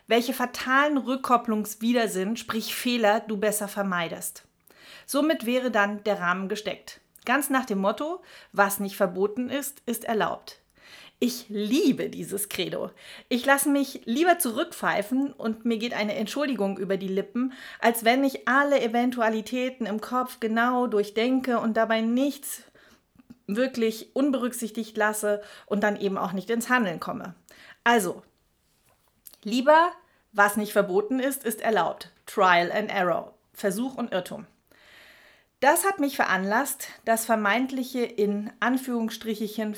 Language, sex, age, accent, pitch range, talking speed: German, female, 40-59, German, 205-255 Hz, 130 wpm